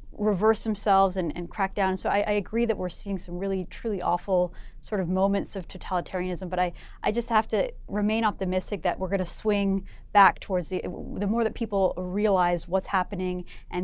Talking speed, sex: 195 wpm, female